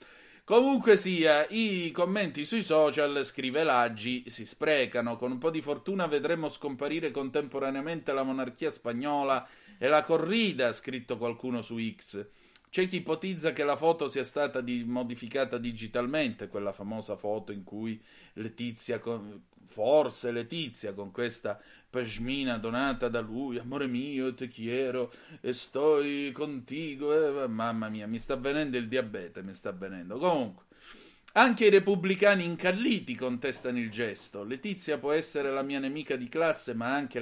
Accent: native